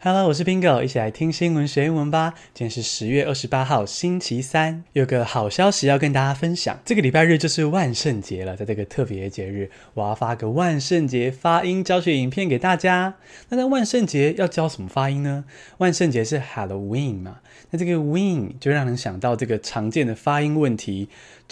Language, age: Chinese, 20-39